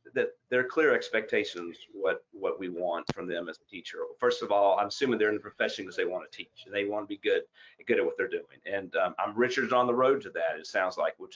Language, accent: English, American